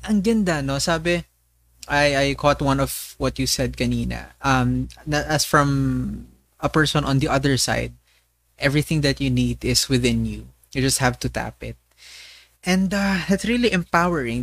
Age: 20-39